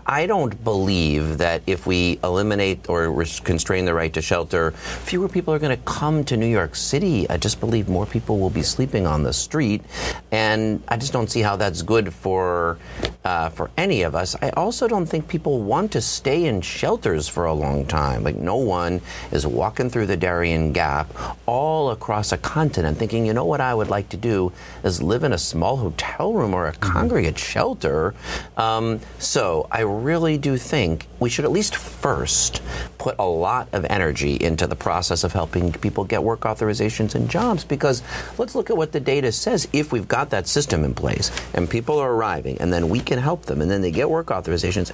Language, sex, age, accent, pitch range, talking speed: English, male, 40-59, American, 85-130 Hz, 205 wpm